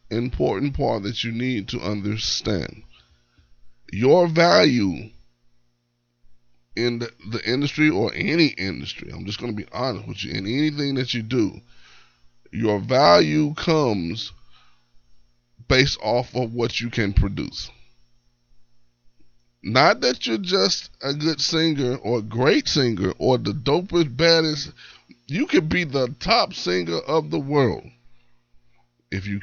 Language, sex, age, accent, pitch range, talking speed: English, male, 20-39, American, 85-125 Hz, 125 wpm